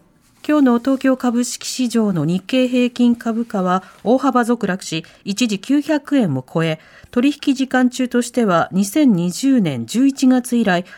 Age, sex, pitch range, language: 40-59, female, 195-275 Hz, Japanese